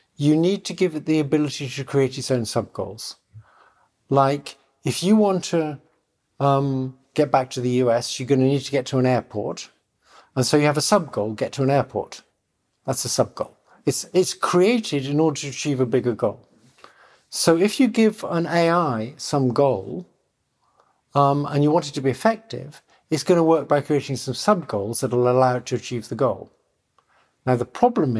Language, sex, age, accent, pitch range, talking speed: English, male, 50-69, British, 130-170 Hz, 190 wpm